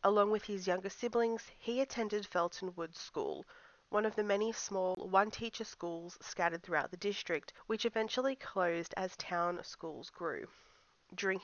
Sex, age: female, 30-49